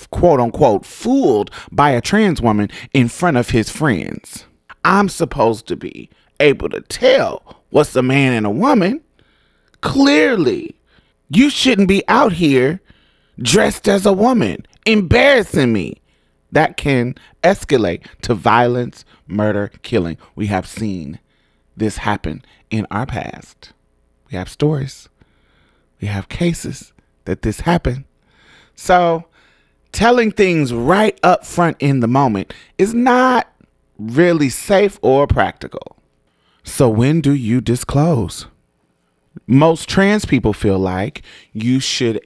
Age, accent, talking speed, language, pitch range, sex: 30-49, American, 125 wpm, English, 110-170 Hz, male